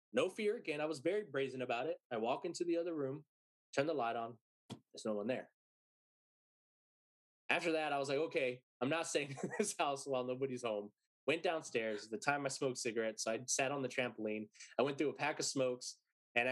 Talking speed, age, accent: 210 wpm, 20-39, American